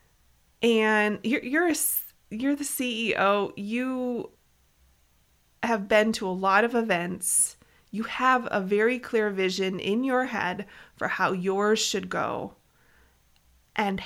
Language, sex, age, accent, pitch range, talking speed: English, female, 30-49, American, 185-220 Hz, 130 wpm